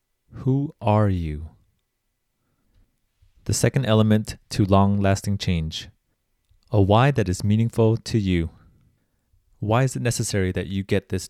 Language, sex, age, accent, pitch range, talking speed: English, male, 30-49, American, 90-110 Hz, 125 wpm